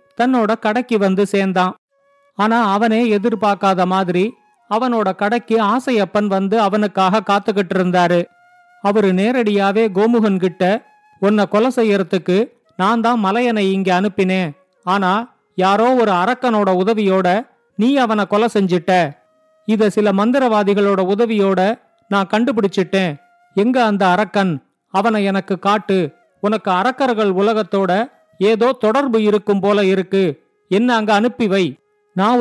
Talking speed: 110 wpm